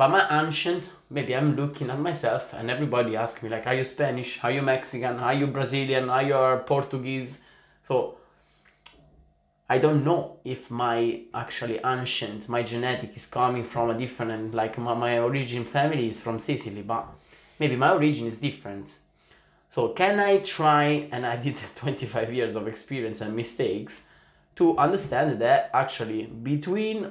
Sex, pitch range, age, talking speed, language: male, 115-145 Hz, 20-39, 160 wpm, Italian